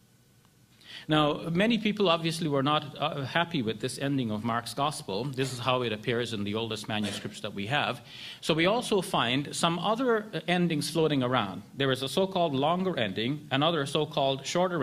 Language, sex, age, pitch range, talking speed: English, male, 50-69, 125-165 Hz, 180 wpm